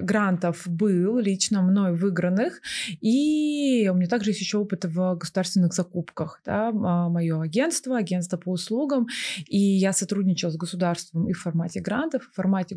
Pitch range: 175-205 Hz